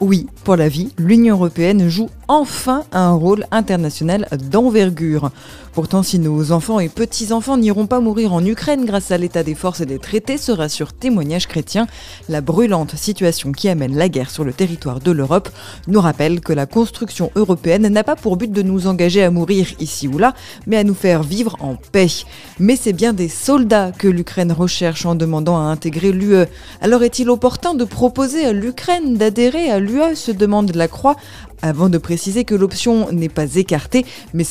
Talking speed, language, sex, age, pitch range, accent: 190 wpm, French, female, 20-39, 170-225 Hz, French